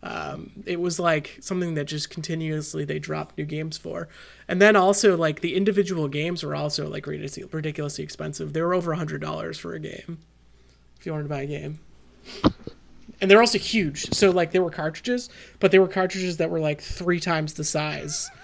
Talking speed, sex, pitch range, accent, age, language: 200 wpm, male, 150-195 Hz, American, 30-49, English